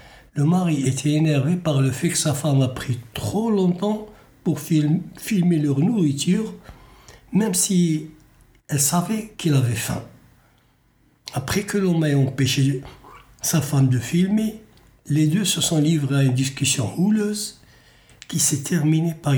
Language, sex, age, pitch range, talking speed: French, male, 60-79, 130-165 Hz, 150 wpm